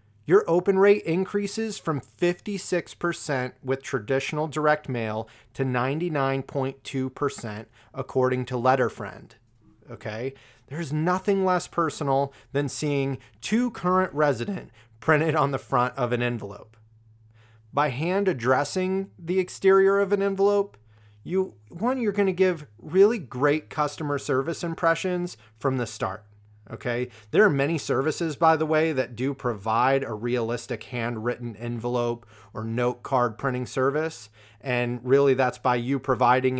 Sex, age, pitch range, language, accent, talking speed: male, 30-49, 115-160 Hz, English, American, 130 wpm